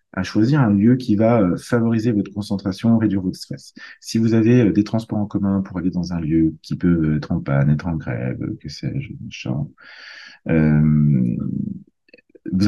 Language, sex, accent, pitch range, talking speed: French, male, French, 85-110 Hz, 175 wpm